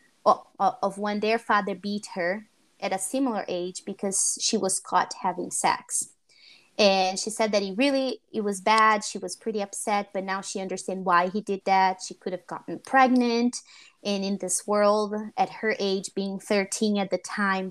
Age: 20-39